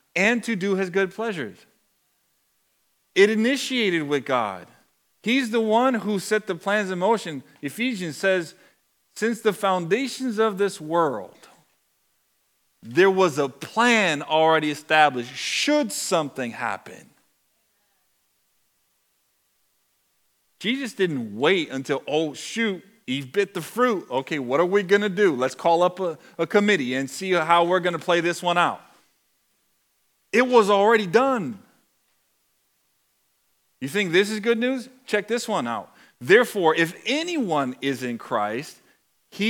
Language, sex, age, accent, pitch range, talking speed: English, male, 40-59, American, 160-215 Hz, 135 wpm